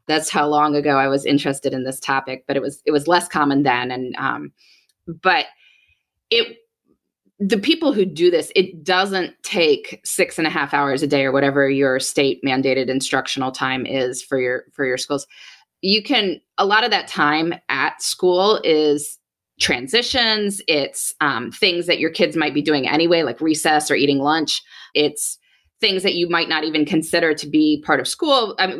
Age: 20-39